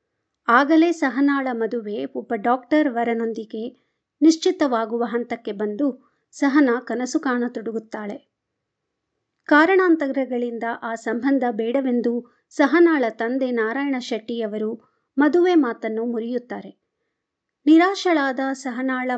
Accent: native